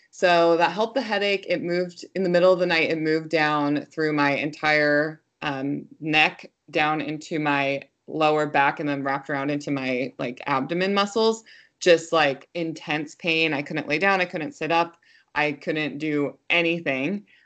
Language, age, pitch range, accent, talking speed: English, 20-39, 150-175 Hz, American, 175 wpm